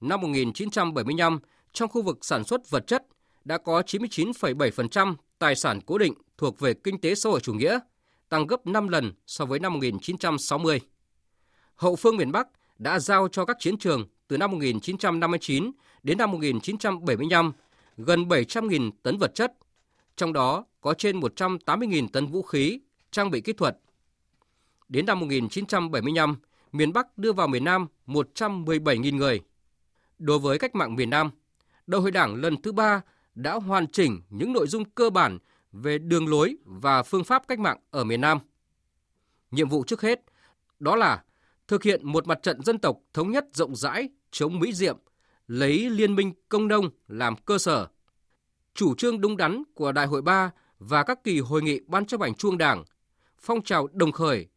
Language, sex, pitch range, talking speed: Vietnamese, male, 140-200 Hz, 175 wpm